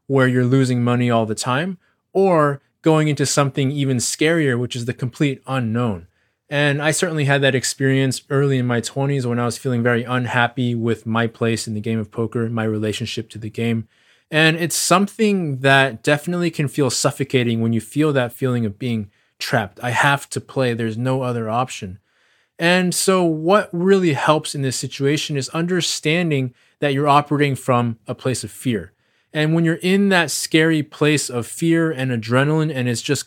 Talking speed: 185 wpm